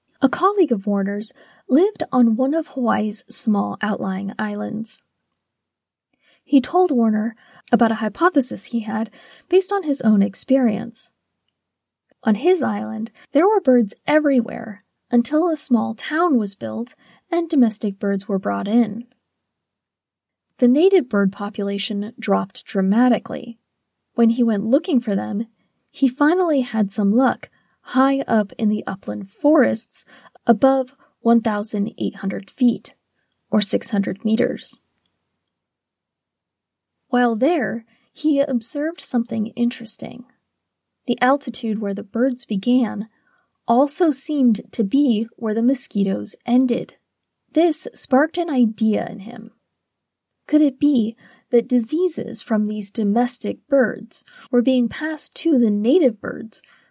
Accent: American